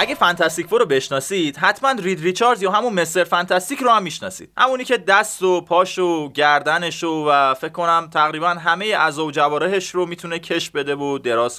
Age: 20-39